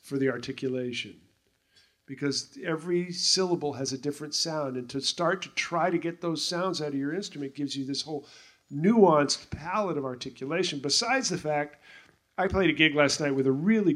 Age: 40-59